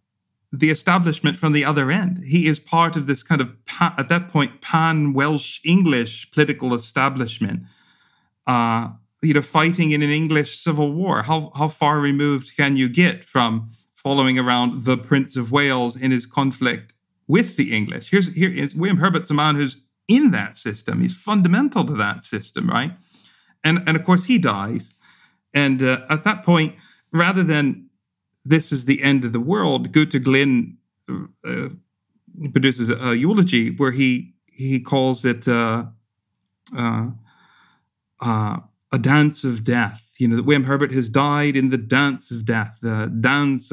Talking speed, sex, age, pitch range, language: 160 wpm, male, 40-59, 120-155 Hz, English